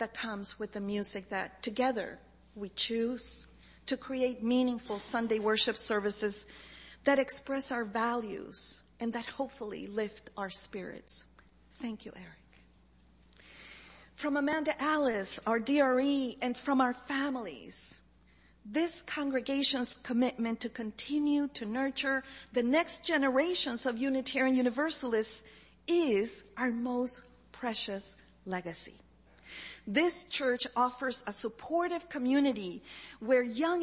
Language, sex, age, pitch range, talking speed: English, female, 40-59, 215-275 Hz, 110 wpm